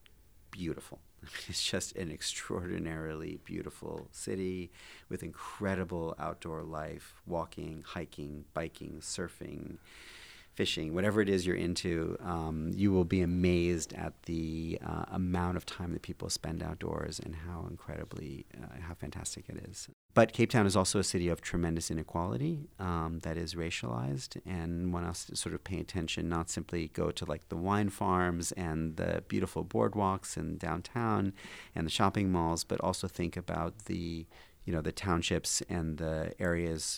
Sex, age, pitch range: male, 40-59, 80-95 Hz